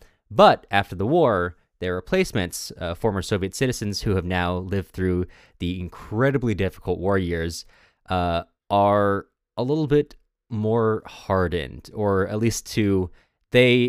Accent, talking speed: American, 140 wpm